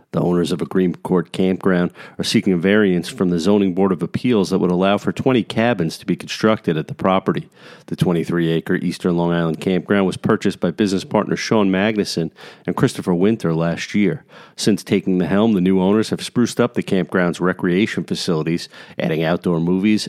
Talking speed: 190 wpm